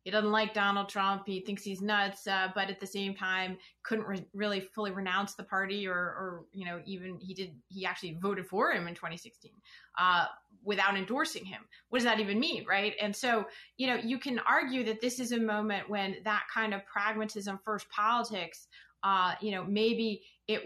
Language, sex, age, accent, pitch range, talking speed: English, female, 30-49, American, 190-220 Hz, 205 wpm